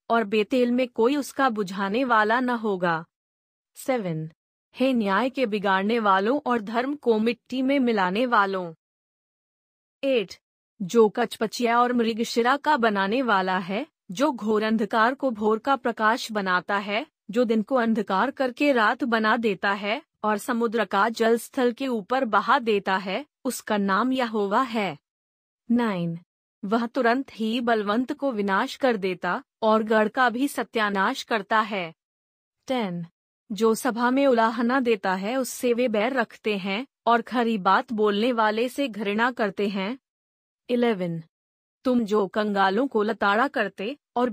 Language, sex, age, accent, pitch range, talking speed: Hindi, female, 30-49, native, 210-250 Hz, 145 wpm